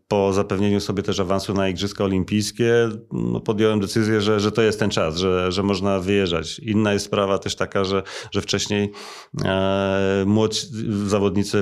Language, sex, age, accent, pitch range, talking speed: Polish, male, 40-59, native, 95-110 Hz, 155 wpm